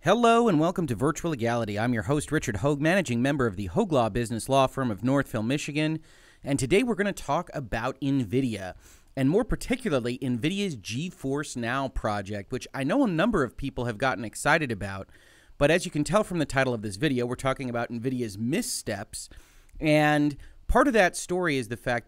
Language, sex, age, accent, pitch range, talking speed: English, male, 30-49, American, 115-155 Hz, 200 wpm